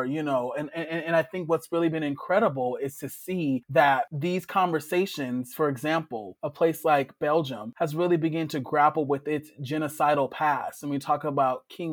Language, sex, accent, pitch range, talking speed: English, male, American, 140-165 Hz, 185 wpm